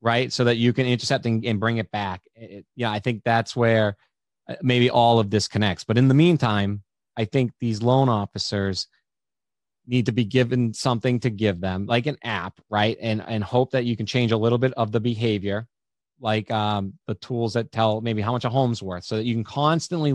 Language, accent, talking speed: English, American, 215 wpm